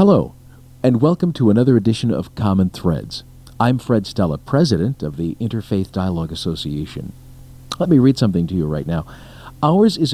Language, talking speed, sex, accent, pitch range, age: English, 165 wpm, male, American, 95-130 Hz, 50-69